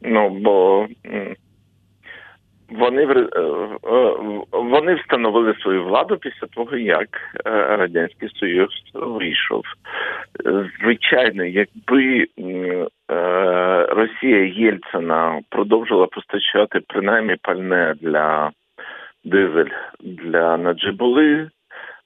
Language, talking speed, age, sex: Ukrainian, 70 wpm, 50-69, male